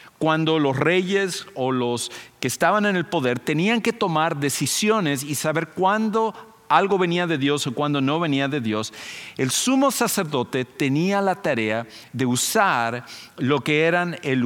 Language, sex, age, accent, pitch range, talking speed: English, male, 50-69, Mexican, 130-175 Hz, 160 wpm